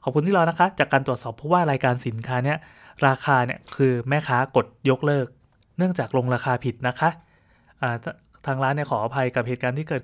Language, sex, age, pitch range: Thai, male, 20-39, 120-145 Hz